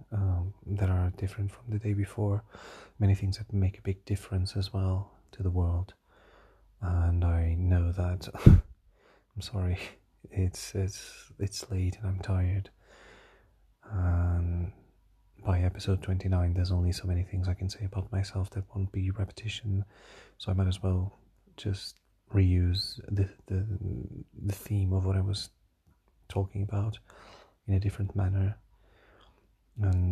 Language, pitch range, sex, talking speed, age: English, 95-100 Hz, male, 145 wpm, 30-49